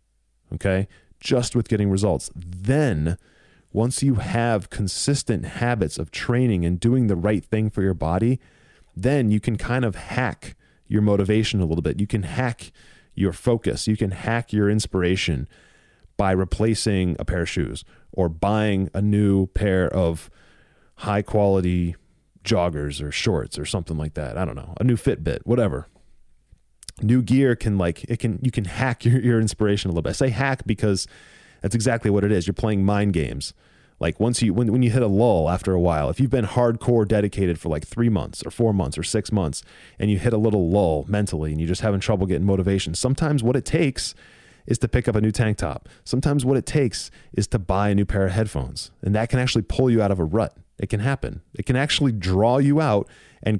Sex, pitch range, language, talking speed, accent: male, 90-120 Hz, English, 205 wpm, American